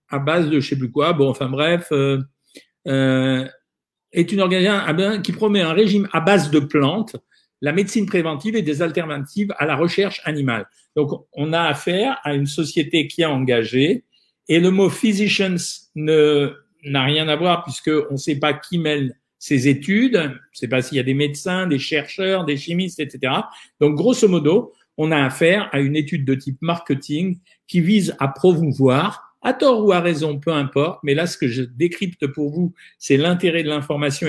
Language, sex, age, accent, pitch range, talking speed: French, male, 50-69, French, 140-195 Hz, 190 wpm